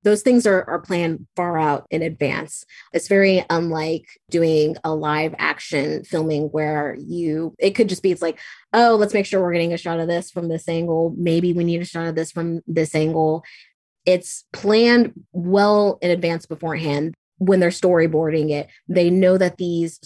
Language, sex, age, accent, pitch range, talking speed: English, female, 20-39, American, 155-175 Hz, 185 wpm